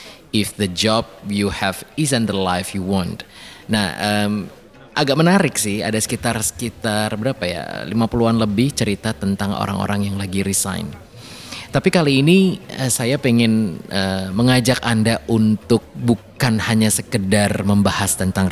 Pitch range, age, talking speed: 95-115 Hz, 20-39, 140 wpm